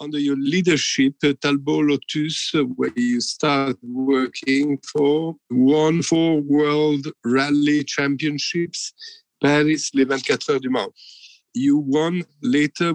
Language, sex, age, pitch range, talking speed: Italian, male, 50-69, 135-155 Hz, 110 wpm